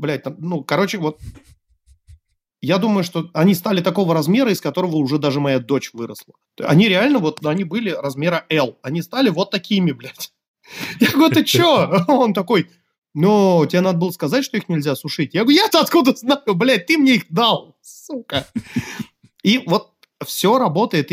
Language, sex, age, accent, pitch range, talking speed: Russian, male, 30-49, native, 145-210 Hz, 170 wpm